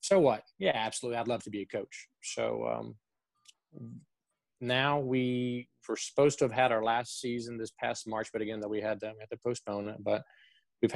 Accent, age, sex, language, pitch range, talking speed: American, 20-39, male, English, 105-125 Hz, 195 wpm